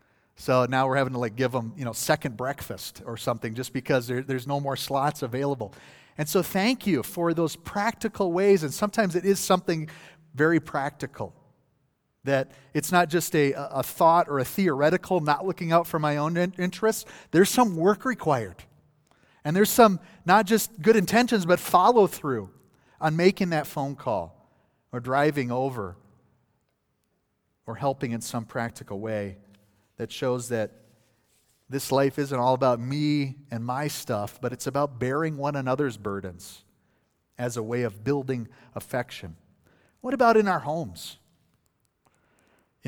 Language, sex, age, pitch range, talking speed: English, male, 40-59, 120-160 Hz, 160 wpm